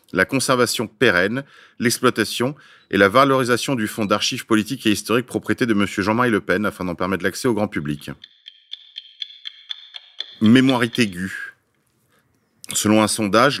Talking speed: 135 wpm